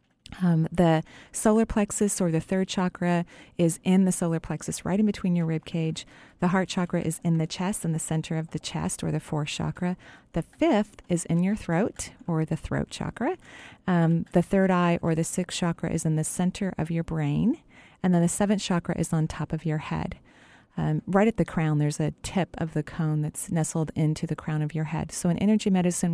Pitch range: 155-180 Hz